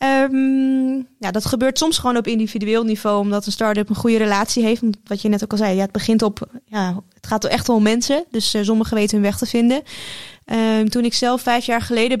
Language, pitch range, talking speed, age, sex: Dutch, 210-245 Hz, 235 wpm, 10-29, female